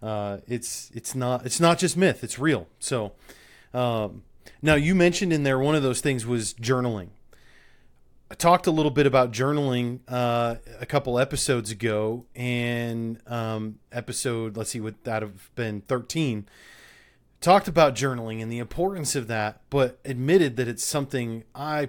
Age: 30-49